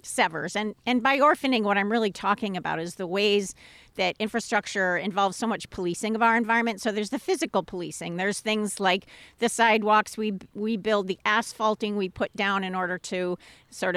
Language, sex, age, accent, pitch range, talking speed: English, female, 50-69, American, 185-230 Hz, 190 wpm